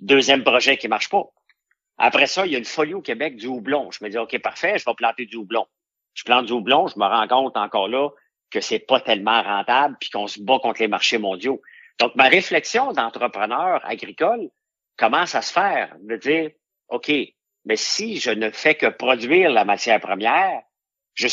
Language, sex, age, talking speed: French, male, 50-69, 210 wpm